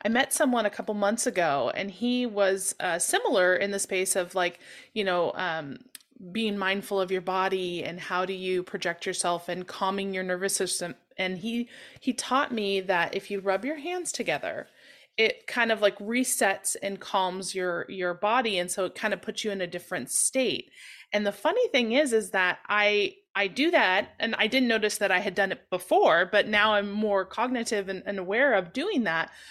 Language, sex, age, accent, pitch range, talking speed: English, female, 20-39, American, 190-230 Hz, 205 wpm